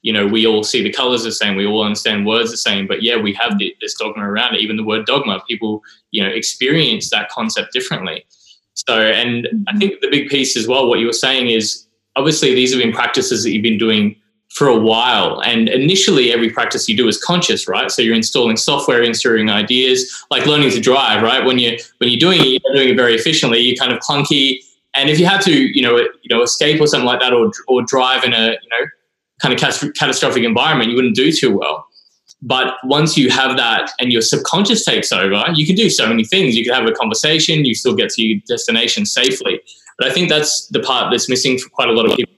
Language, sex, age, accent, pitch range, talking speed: English, male, 20-39, Australian, 110-160 Hz, 235 wpm